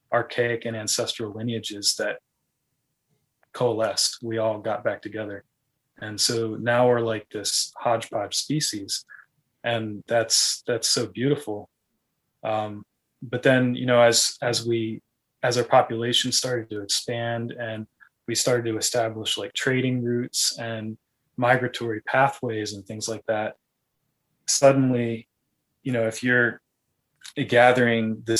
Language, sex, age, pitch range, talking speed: English, male, 20-39, 110-125 Hz, 125 wpm